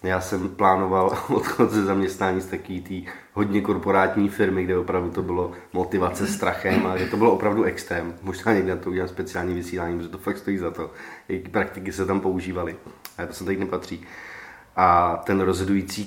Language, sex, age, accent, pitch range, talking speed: Czech, male, 30-49, native, 95-105 Hz, 185 wpm